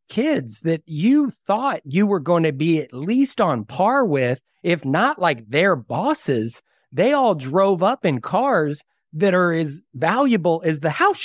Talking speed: 170 wpm